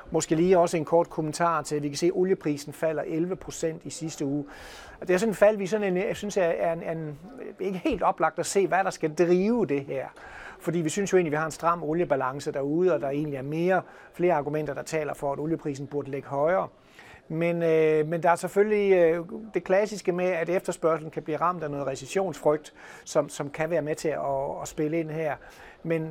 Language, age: Danish, 30-49